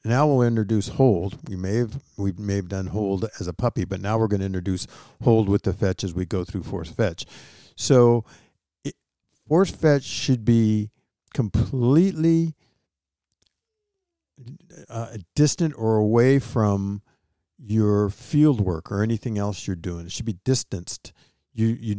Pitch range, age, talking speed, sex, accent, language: 95-130 Hz, 50-69, 155 wpm, male, American, English